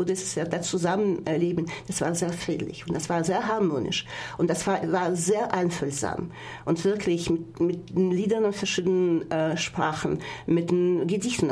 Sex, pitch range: female, 165-190 Hz